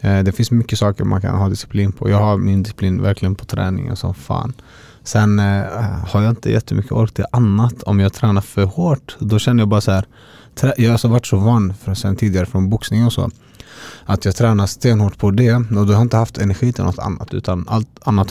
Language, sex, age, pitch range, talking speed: Swedish, male, 30-49, 100-120 Hz, 230 wpm